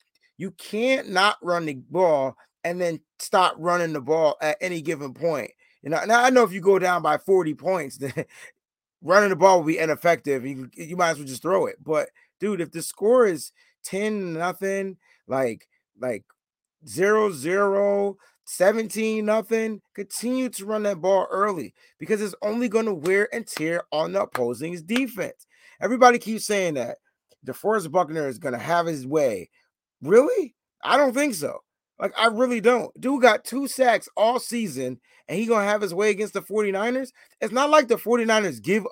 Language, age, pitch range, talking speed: English, 30-49, 175-240 Hz, 170 wpm